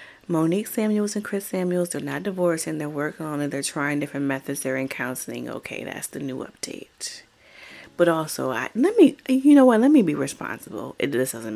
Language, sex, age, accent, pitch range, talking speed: English, female, 30-49, American, 140-210 Hz, 195 wpm